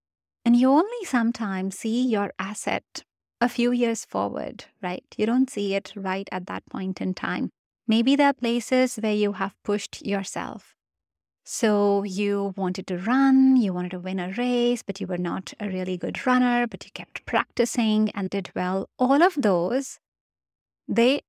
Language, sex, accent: English, female, Indian